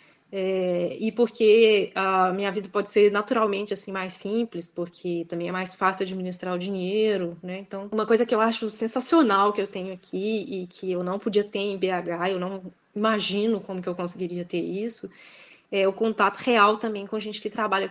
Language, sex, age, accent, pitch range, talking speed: Portuguese, female, 10-29, Brazilian, 185-225 Hz, 200 wpm